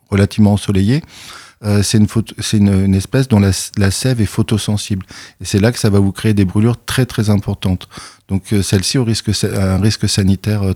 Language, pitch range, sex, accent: French, 100-115 Hz, male, French